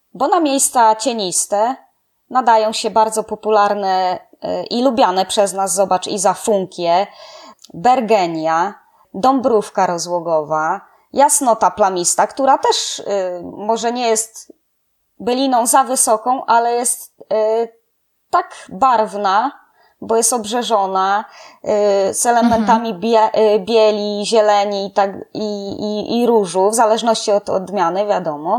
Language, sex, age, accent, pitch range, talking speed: Polish, female, 20-39, native, 195-245 Hz, 115 wpm